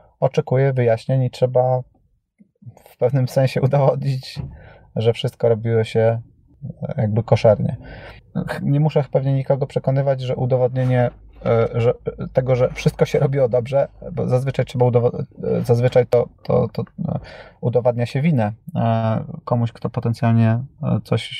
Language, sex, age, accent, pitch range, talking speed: Polish, male, 30-49, native, 115-135 Hz, 120 wpm